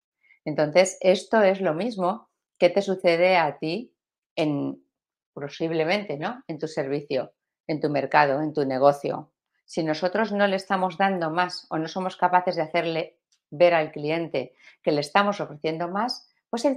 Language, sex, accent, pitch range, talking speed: Spanish, female, Spanish, 155-210 Hz, 155 wpm